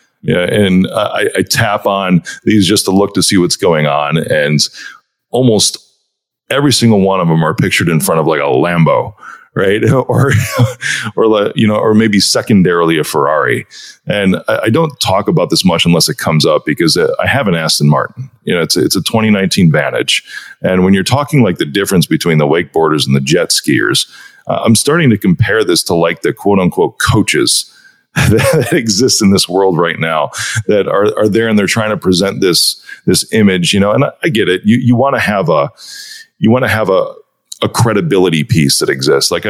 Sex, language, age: male, English, 40-59